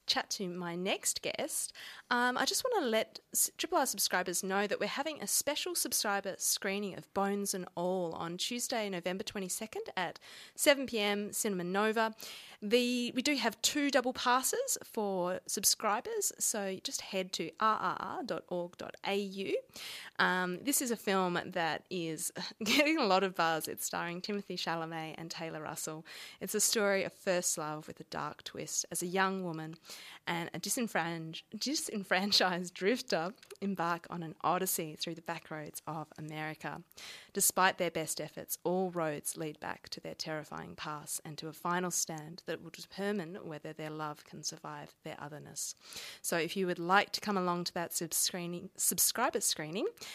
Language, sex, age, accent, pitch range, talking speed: English, female, 30-49, Australian, 170-215 Hz, 160 wpm